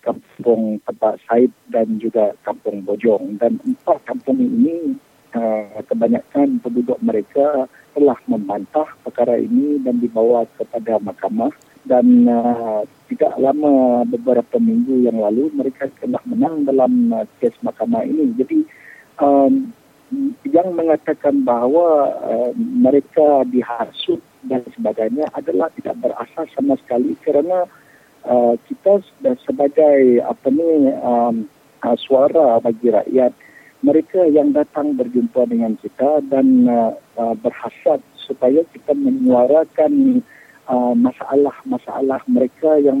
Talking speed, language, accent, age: 105 wpm, English, Indonesian, 50-69